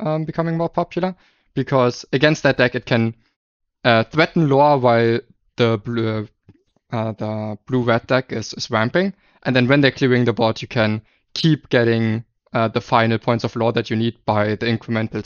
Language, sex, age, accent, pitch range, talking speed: English, male, 20-39, German, 110-135 Hz, 185 wpm